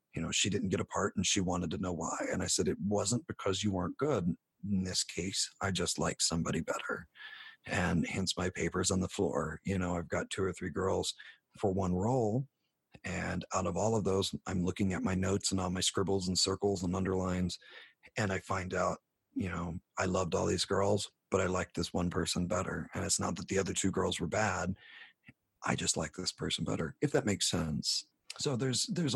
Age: 40-59